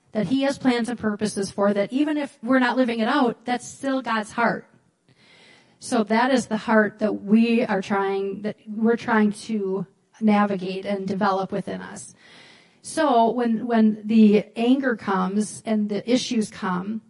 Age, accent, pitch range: 40-59, American, 200-230 Hz